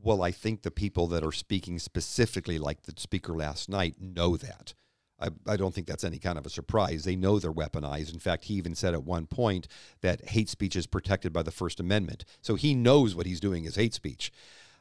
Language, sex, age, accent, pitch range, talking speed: English, male, 50-69, American, 95-125 Hz, 225 wpm